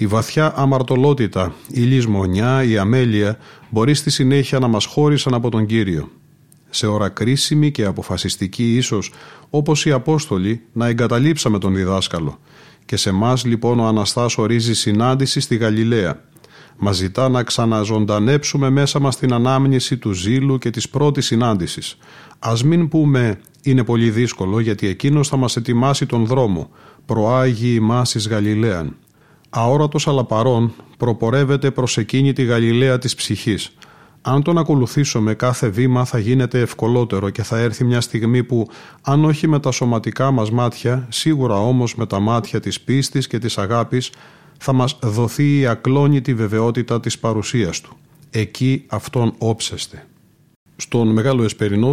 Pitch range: 110-135 Hz